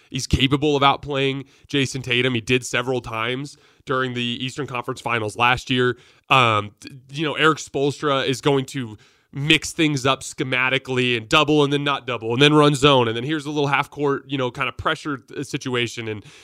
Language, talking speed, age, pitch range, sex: English, 190 wpm, 20-39, 120-145 Hz, male